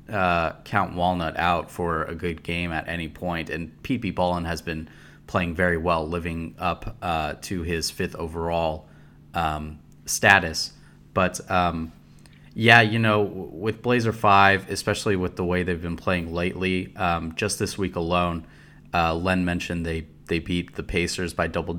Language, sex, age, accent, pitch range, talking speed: English, male, 30-49, American, 85-95 Hz, 165 wpm